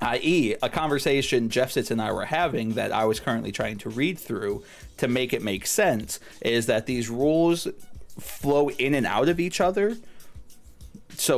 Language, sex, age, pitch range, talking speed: English, male, 30-49, 110-155 Hz, 180 wpm